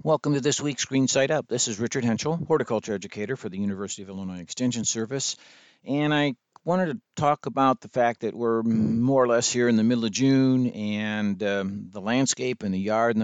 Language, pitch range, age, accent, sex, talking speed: English, 100-125 Hz, 60-79, American, male, 215 wpm